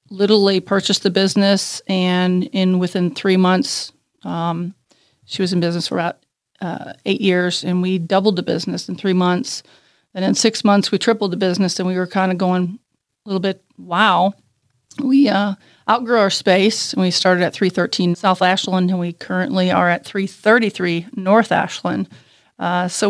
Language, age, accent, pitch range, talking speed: English, 40-59, American, 180-200 Hz, 175 wpm